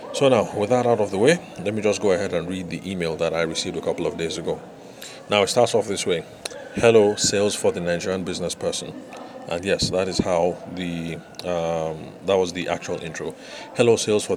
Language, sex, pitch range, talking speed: English, male, 85-105 Hz, 220 wpm